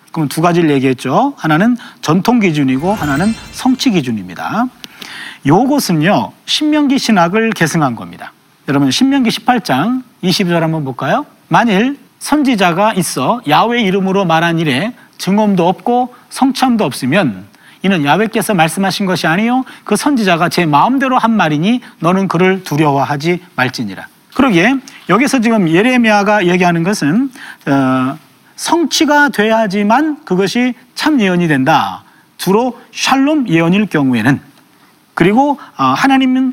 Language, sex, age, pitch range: Korean, male, 40-59, 165-245 Hz